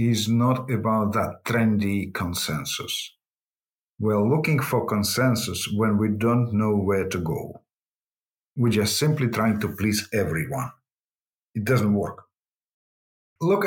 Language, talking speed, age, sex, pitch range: English, 125 wpm, 50-69, male, 105-125 Hz